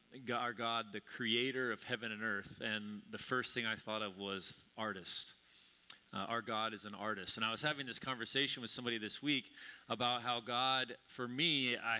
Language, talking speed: English, 190 wpm